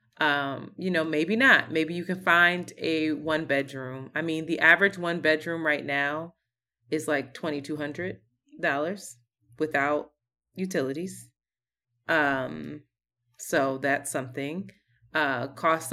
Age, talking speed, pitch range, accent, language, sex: 20-39, 115 wpm, 140-185 Hz, American, English, female